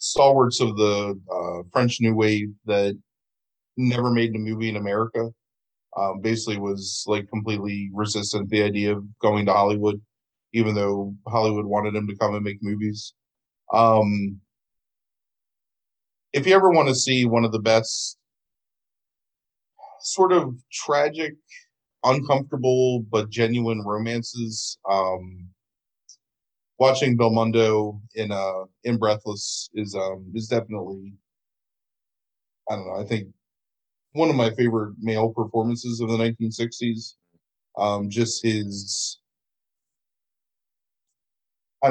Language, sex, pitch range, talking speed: English, male, 100-120 Hz, 120 wpm